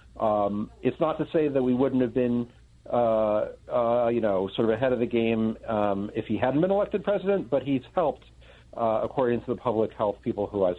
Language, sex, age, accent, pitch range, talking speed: English, male, 50-69, American, 100-125 Hz, 215 wpm